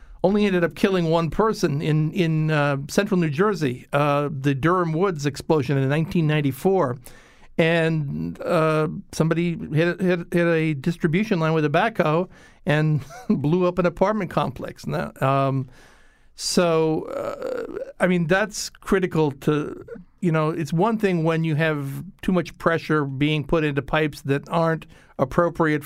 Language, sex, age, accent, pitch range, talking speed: English, male, 60-79, American, 150-185 Hz, 140 wpm